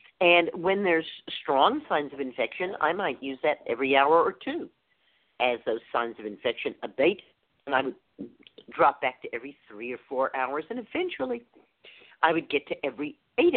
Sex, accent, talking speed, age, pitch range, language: female, American, 175 wpm, 50-69, 135-180 Hz, English